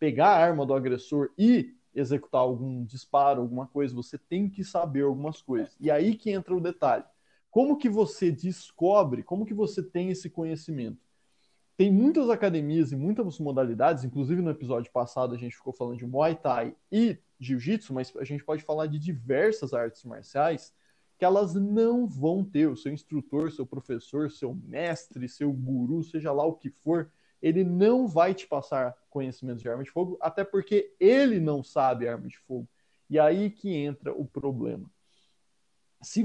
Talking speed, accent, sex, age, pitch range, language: 175 wpm, Brazilian, male, 20-39, 135-190 Hz, Portuguese